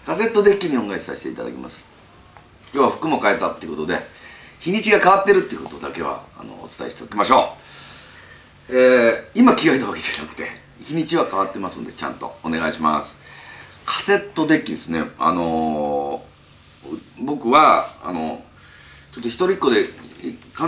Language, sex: Japanese, male